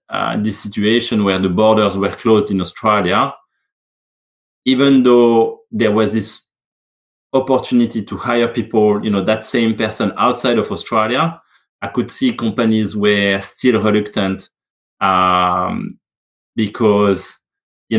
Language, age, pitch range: English, 30-49, 105-125 Hz